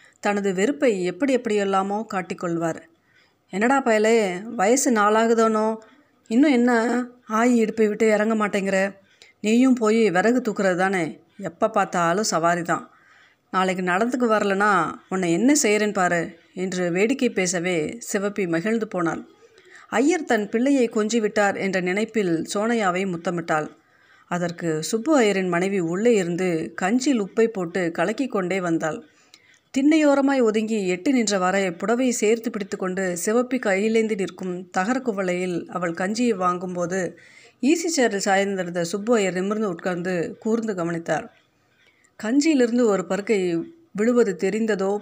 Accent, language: native, Tamil